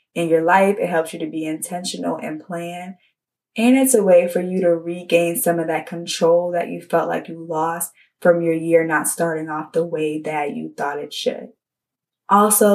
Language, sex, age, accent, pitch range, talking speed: English, female, 20-39, American, 160-185 Hz, 205 wpm